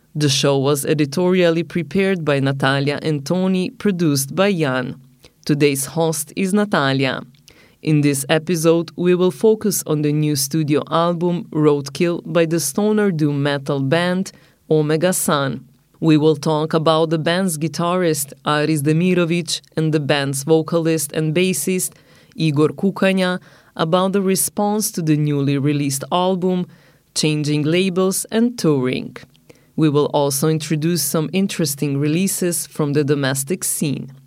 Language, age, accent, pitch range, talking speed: French, 30-49, Italian, 150-180 Hz, 135 wpm